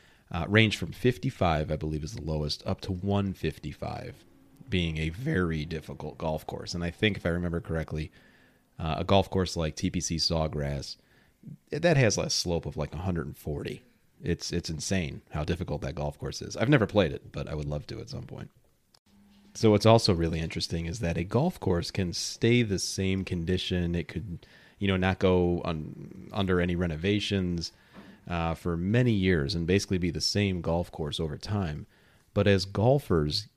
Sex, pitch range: male, 80-105 Hz